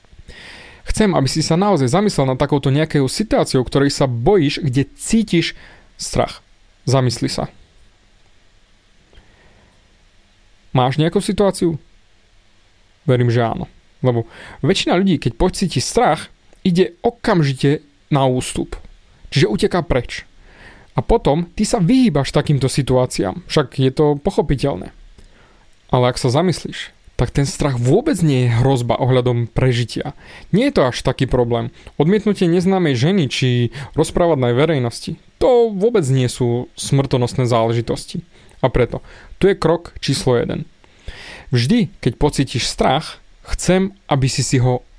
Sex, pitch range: male, 115-160 Hz